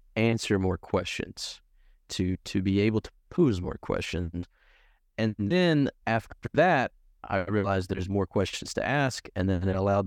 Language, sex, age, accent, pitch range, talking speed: English, male, 30-49, American, 90-105 Hz, 155 wpm